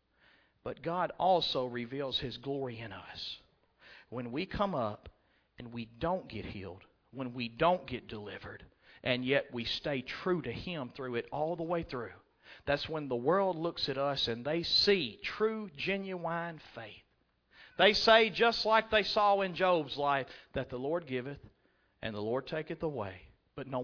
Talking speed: 170 wpm